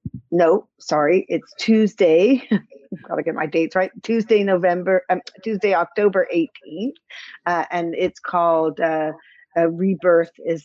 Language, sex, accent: English, female, American